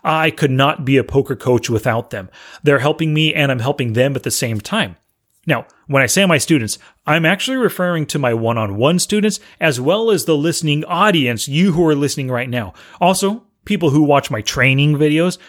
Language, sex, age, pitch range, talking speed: English, male, 30-49, 125-175 Hz, 200 wpm